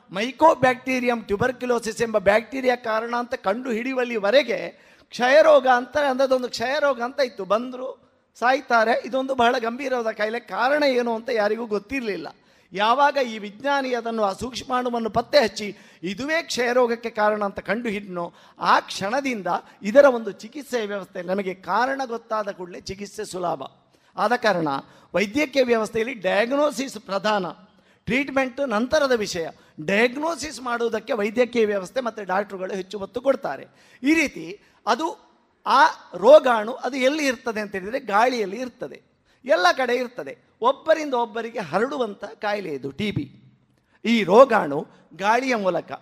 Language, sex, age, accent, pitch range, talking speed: Kannada, male, 50-69, native, 205-260 Hz, 125 wpm